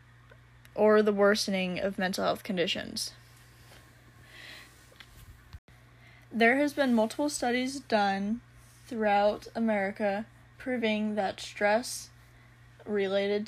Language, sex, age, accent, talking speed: English, female, 10-29, American, 85 wpm